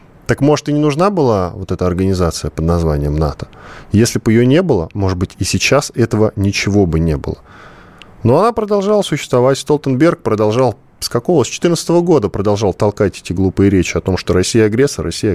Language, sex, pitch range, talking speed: Russian, male, 90-120 Hz, 190 wpm